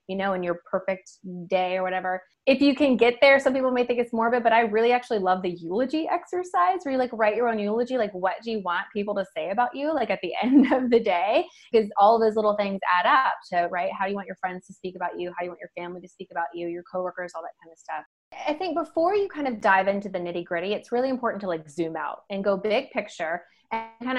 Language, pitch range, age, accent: English, 185-235 Hz, 20-39, American